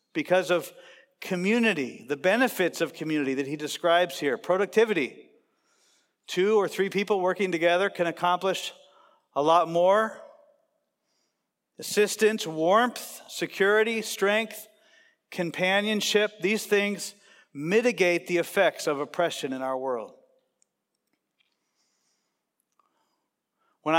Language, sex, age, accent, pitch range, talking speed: English, male, 50-69, American, 165-210 Hz, 100 wpm